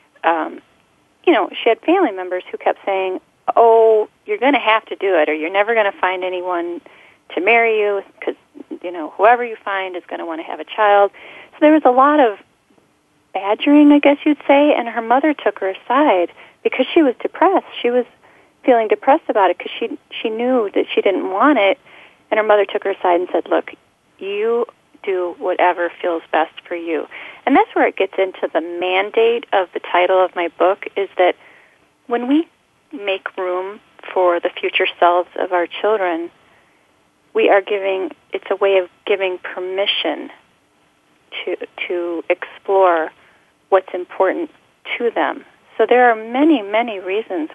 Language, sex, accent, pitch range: English, female, American, 185-280 Hz